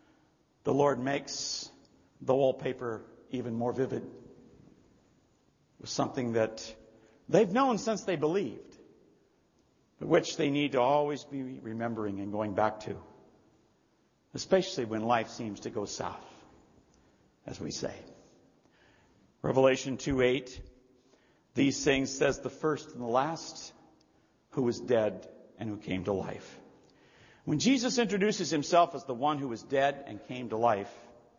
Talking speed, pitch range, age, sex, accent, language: 135 wpm, 115-155 Hz, 60-79, male, American, English